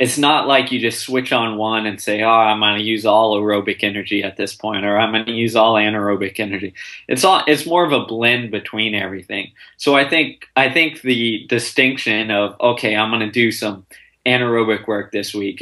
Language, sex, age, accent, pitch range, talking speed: English, male, 20-39, American, 105-115 Hz, 215 wpm